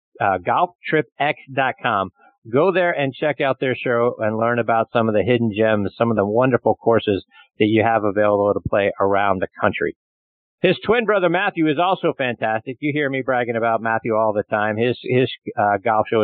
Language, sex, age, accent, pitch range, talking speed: English, male, 50-69, American, 115-135 Hz, 190 wpm